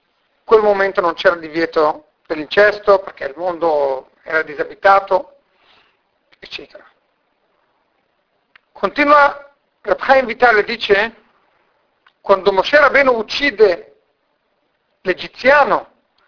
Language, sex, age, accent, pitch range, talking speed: Italian, male, 50-69, native, 200-275 Hz, 90 wpm